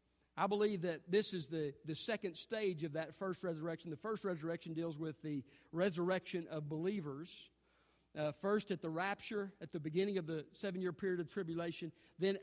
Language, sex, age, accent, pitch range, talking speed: English, male, 50-69, American, 150-195 Hz, 180 wpm